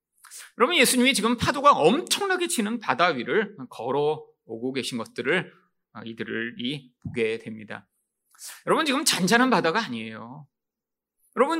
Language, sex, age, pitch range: Korean, male, 30-49, 195-295 Hz